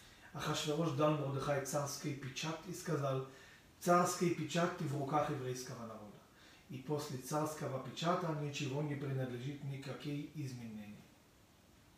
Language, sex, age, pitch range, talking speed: Russian, male, 40-59, 135-175 Hz, 115 wpm